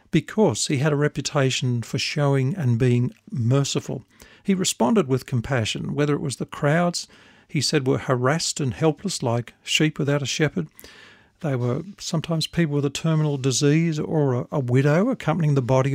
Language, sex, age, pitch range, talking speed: English, male, 50-69, 130-160 Hz, 165 wpm